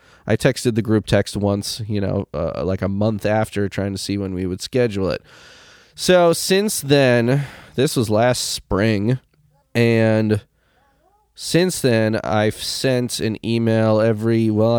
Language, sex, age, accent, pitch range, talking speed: English, male, 20-39, American, 100-125 Hz, 150 wpm